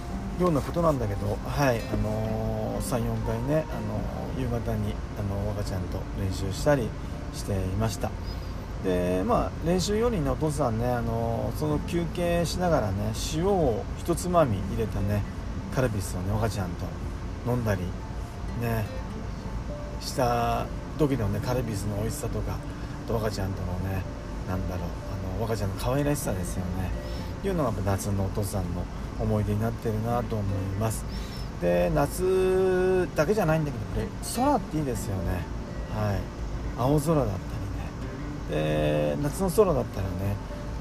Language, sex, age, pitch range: Japanese, male, 40-59, 95-140 Hz